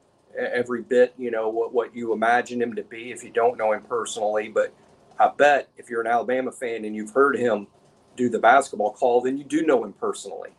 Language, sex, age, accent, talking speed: English, male, 40-59, American, 220 wpm